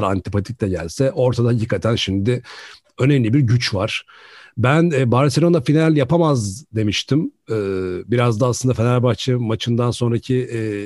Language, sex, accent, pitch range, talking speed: Turkish, male, native, 110-155 Hz, 115 wpm